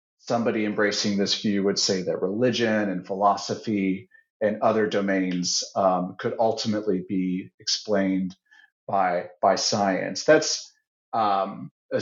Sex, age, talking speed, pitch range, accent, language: male, 40-59, 120 wpm, 100-120 Hz, American, English